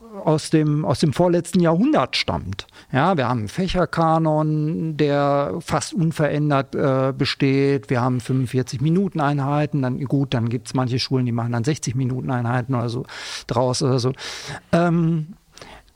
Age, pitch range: 50-69, 130-165 Hz